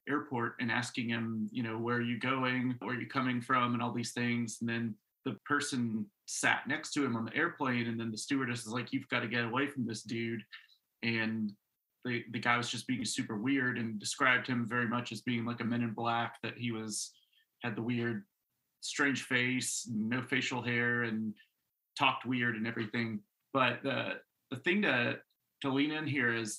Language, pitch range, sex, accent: English, 115-135 Hz, male, American